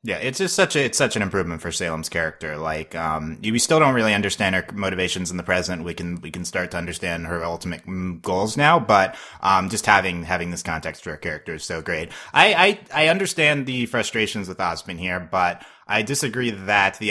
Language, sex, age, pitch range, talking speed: English, male, 30-49, 85-110 Hz, 220 wpm